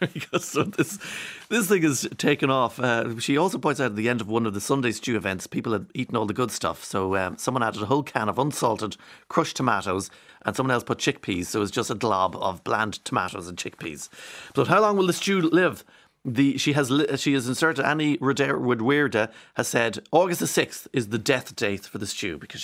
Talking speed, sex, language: 235 wpm, male, English